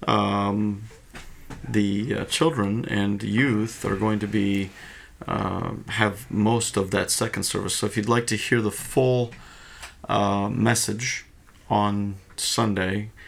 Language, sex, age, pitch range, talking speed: English, male, 40-59, 95-110 Hz, 130 wpm